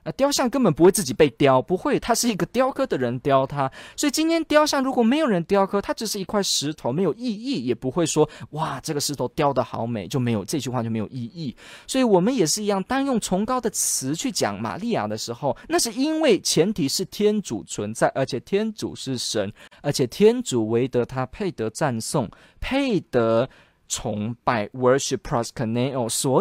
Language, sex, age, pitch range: Chinese, male, 20-39, 120-175 Hz